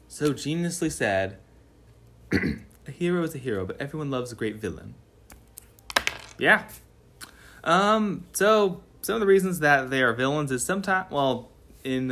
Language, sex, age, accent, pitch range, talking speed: English, male, 20-39, American, 105-160 Hz, 145 wpm